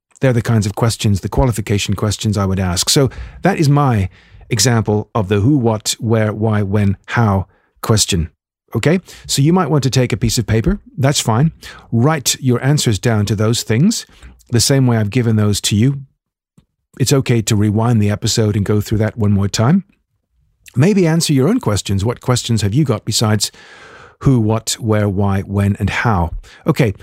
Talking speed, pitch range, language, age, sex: 190 wpm, 105-145 Hz, English, 50-69, male